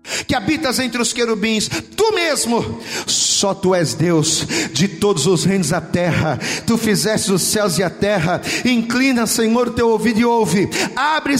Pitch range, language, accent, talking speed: 205-265 Hz, Portuguese, Brazilian, 170 wpm